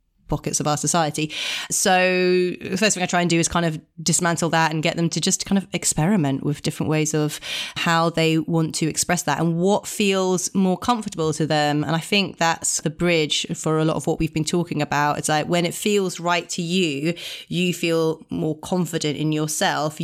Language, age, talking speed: English, 30-49, 215 wpm